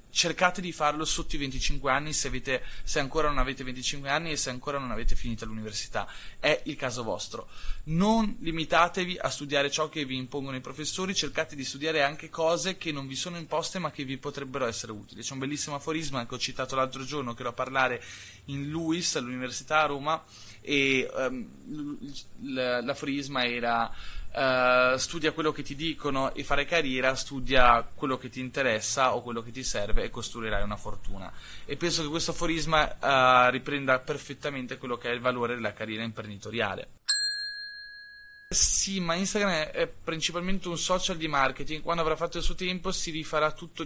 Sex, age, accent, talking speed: male, 20-39, native, 175 wpm